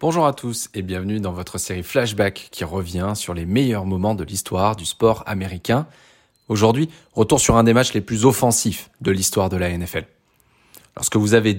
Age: 20-39